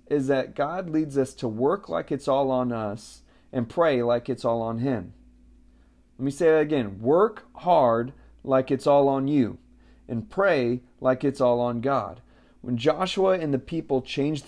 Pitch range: 115-145 Hz